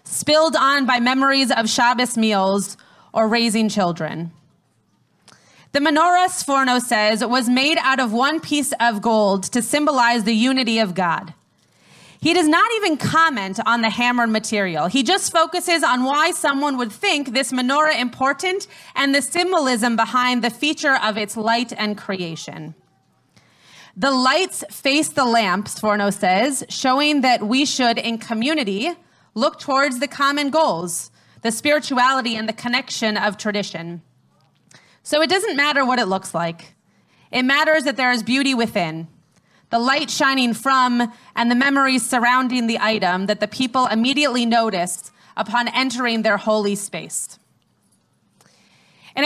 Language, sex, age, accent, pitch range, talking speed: English, female, 30-49, American, 220-280 Hz, 145 wpm